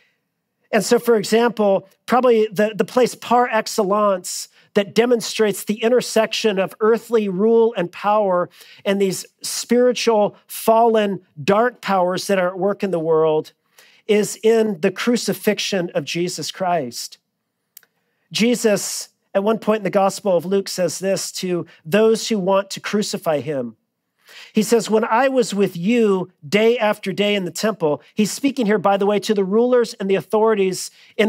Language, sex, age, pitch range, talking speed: English, male, 40-59, 185-225 Hz, 160 wpm